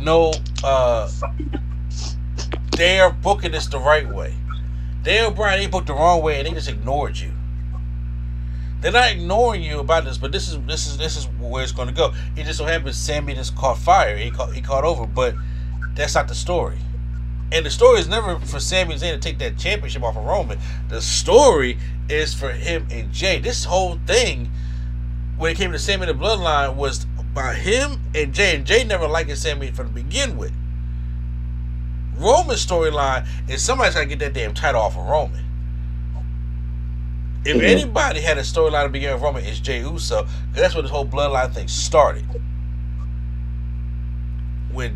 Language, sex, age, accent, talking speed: English, male, 30-49, American, 180 wpm